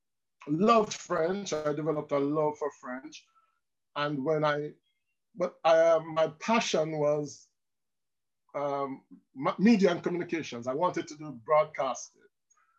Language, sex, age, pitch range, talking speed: English, male, 50-69, 140-180 Hz, 120 wpm